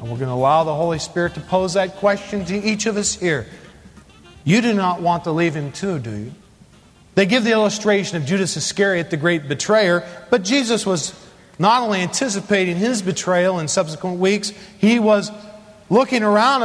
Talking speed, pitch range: 185 wpm, 175-235 Hz